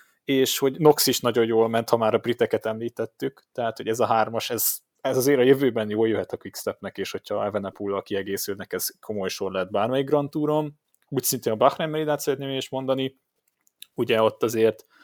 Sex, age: male, 20-39